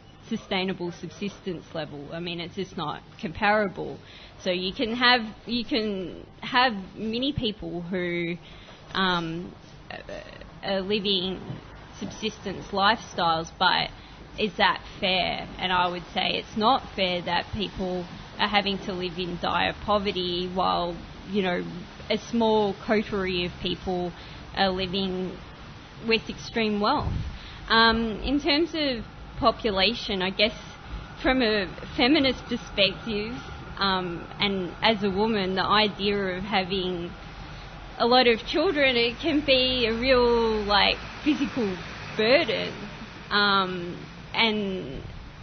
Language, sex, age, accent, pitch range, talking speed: English, female, 20-39, Australian, 180-220 Hz, 120 wpm